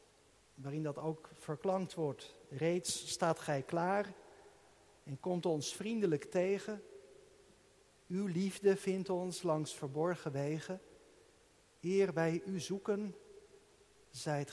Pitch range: 145-205 Hz